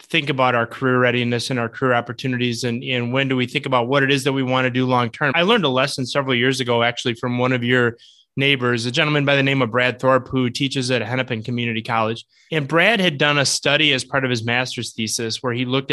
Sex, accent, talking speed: male, American, 250 wpm